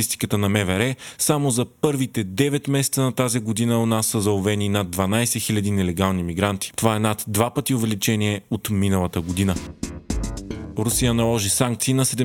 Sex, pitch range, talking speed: male, 105-130 Hz, 155 wpm